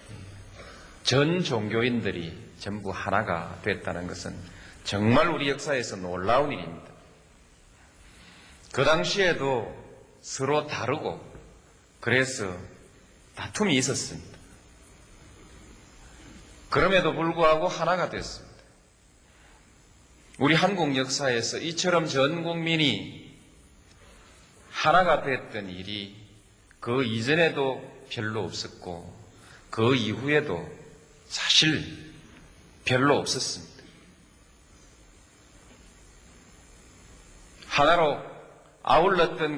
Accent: native